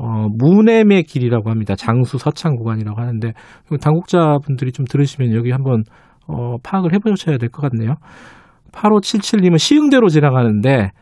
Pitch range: 120-165 Hz